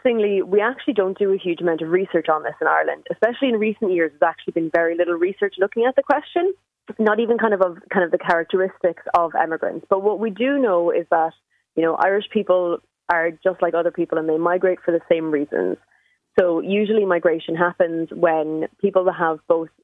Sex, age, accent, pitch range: female, 20-39, Irish, 165-210 Hz